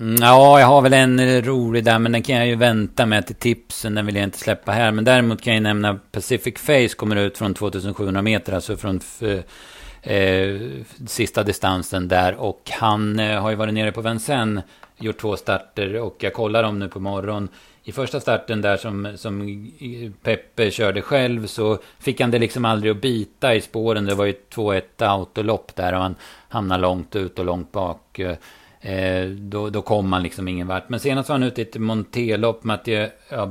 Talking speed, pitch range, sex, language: 190 wpm, 100-115 Hz, male, Swedish